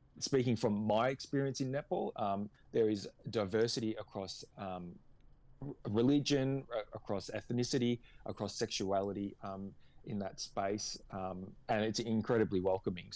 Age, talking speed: 20-39, 120 wpm